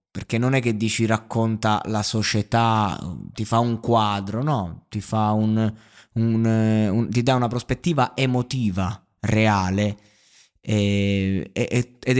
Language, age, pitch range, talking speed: Italian, 20-39, 105-120 Hz, 140 wpm